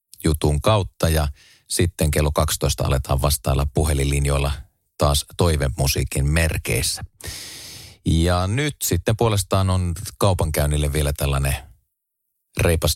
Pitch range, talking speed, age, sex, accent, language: 75-90 Hz, 100 wpm, 30-49, male, native, Finnish